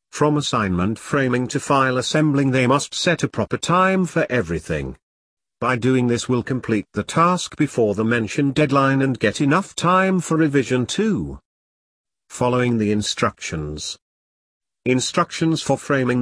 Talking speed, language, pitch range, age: 140 wpm, English, 110-145 Hz, 50-69